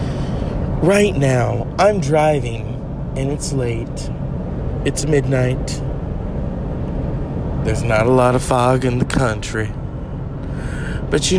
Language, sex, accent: English, male, American